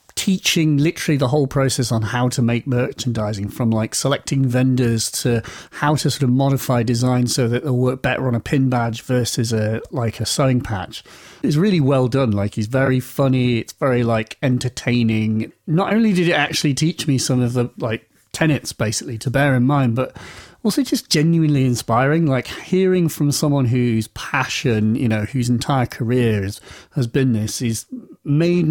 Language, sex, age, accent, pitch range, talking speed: English, male, 40-59, British, 115-145 Hz, 180 wpm